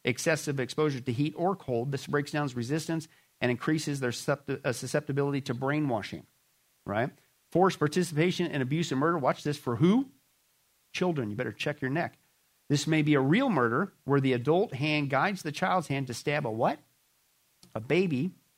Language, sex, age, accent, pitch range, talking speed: English, male, 50-69, American, 130-160 Hz, 170 wpm